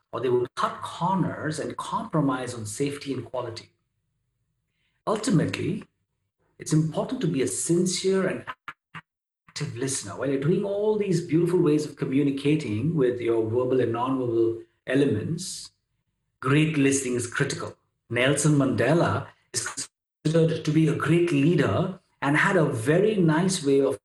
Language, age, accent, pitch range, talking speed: English, 50-69, Indian, 125-170 Hz, 140 wpm